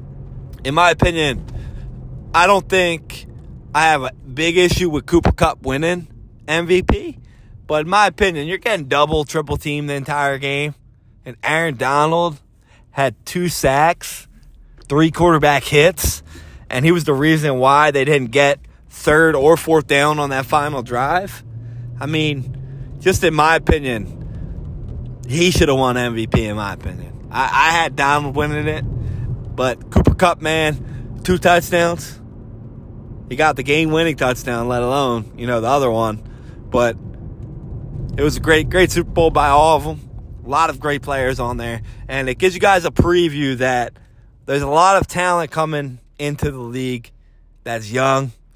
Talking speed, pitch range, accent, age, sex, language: 160 wpm, 120-155 Hz, American, 20-39, male, English